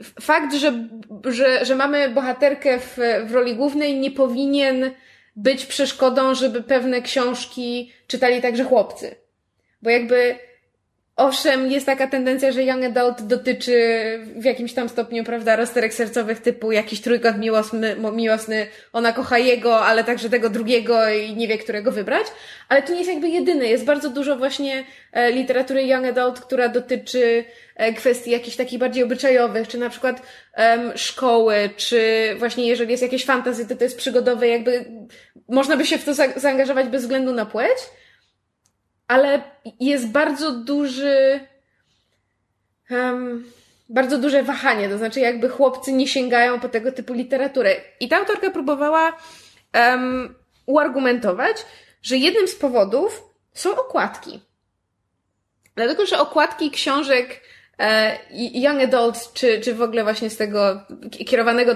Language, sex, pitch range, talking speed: Polish, female, 235-270 Hz, 140 wpm